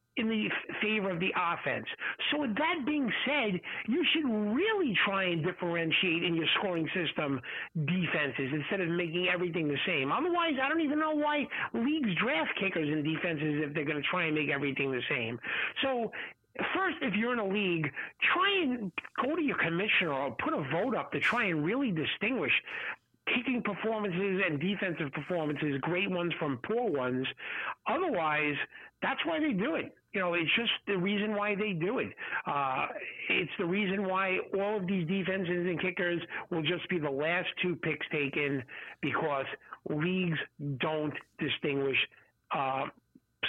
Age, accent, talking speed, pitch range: 50-69, American, 170 wpm, 155-215 Hz